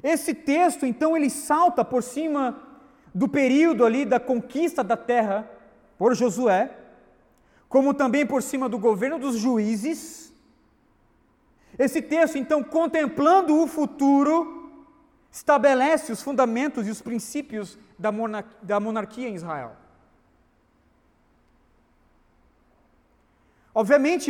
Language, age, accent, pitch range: Portuguese, 40-59, Brazilian, 230-290 Hz